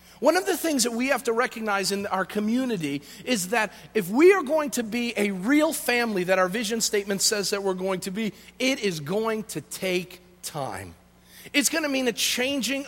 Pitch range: 185-250 Hz